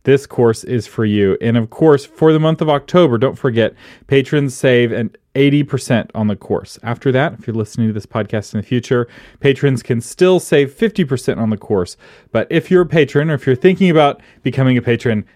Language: English